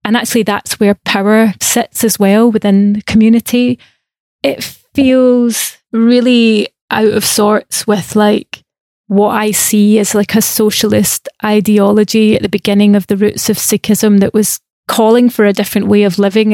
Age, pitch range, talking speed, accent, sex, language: 20-39, 205-220 Hz, 160 wpm, British, female, English